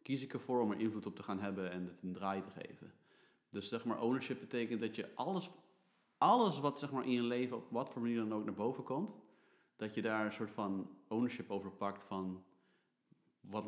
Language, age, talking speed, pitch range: Dutch, 30-49, 225 wpm, 95-115 Hz